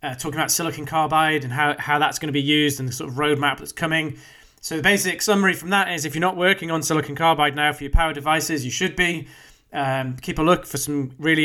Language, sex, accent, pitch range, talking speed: English, male, British, 145-180 Hz, 255 wpm